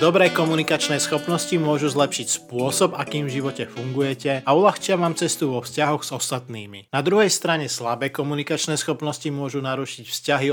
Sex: male